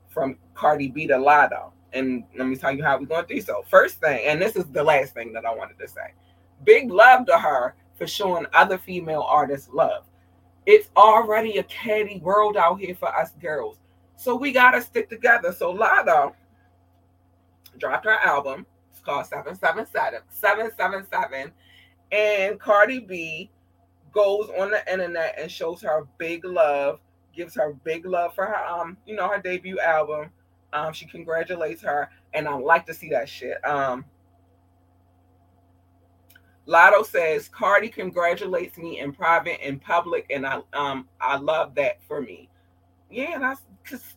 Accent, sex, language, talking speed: American, female, English, 160 wpm